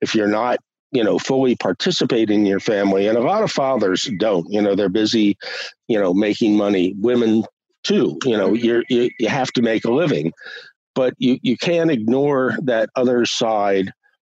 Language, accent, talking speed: English, American, 185 wpm